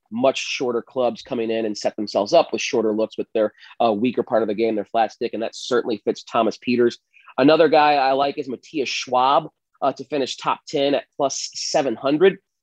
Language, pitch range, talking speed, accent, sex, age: English, 120-160 Hz, 210 wpm, American, male, 30-49